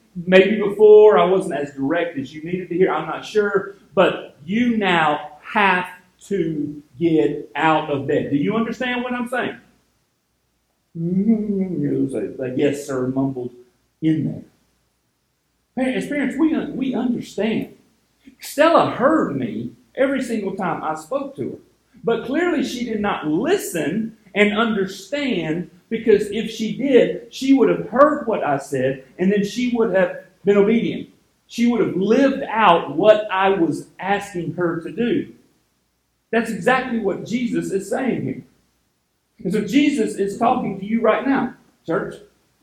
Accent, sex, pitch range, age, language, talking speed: American, male, 180-245 Hz, 50-69, English, 145 wpm